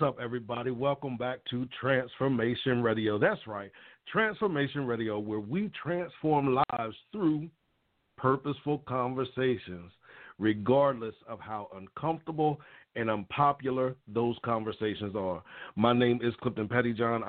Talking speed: 115 wpm